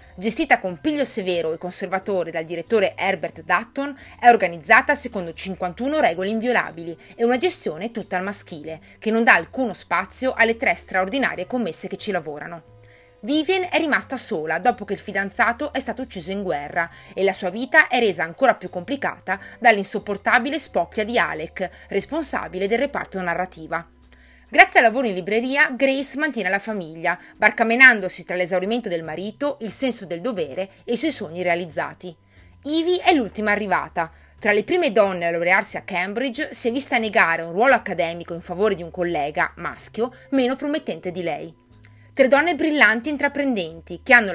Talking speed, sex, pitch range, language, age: 165 wpm, female, 175-255 Hz, Italian, 30-49